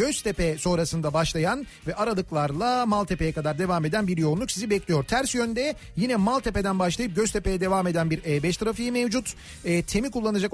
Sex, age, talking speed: male, 40-59, 160 wpm